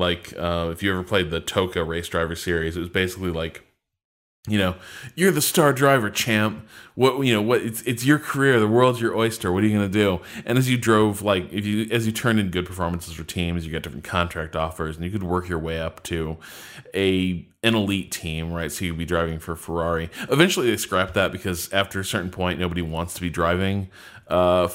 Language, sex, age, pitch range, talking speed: English, male, 20-39, 85-110 Hz, 230 wpm